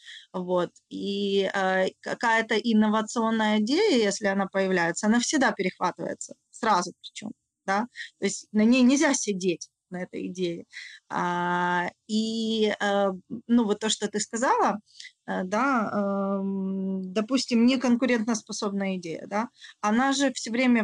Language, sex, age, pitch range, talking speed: Russian, female, 20-39, 190-235 Hz, 125 wpm